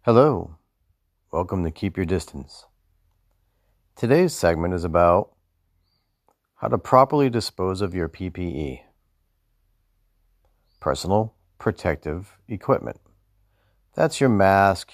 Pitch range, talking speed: 85-105 Hz, 90 wpm